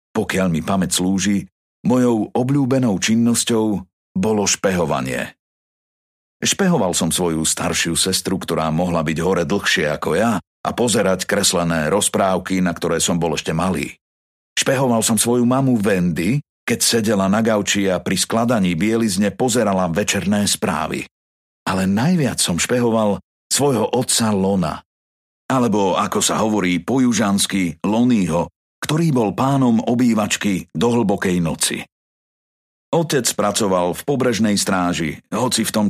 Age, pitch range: 50-69, 90-120 Hz